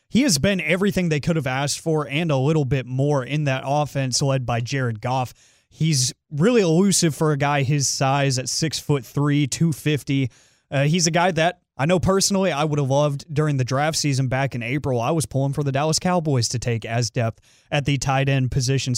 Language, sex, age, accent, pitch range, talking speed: English, male, 30-49, American, 135-165 Hz, 220 wpm